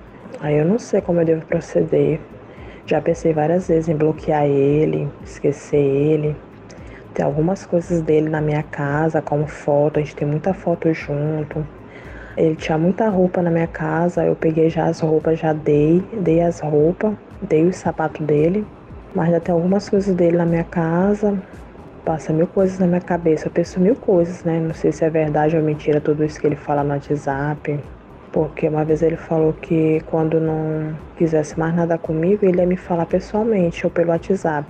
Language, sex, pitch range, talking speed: Portuguese, female, 150-175 Hz, 185 wpm